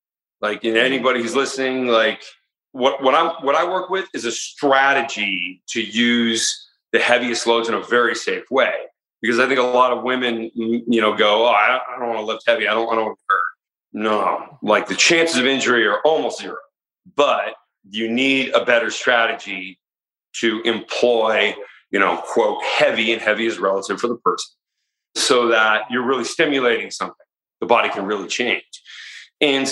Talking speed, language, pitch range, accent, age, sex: 180 wpm, English, 115-145 Hz, American, 40-59, male